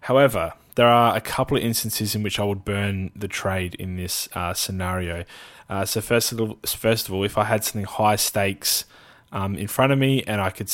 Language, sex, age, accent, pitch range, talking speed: English, male, 20-39, Australian, 95-110 Hz, 225 wpm